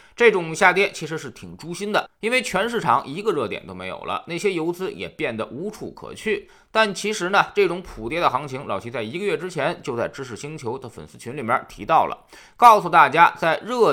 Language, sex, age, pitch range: Chinese, male, 20-39, 145-210 Hz